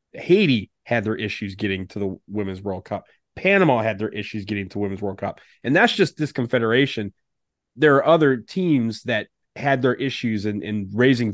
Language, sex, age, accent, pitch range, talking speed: English, male, 30-49, American, 105-125 Hz, 185 wpm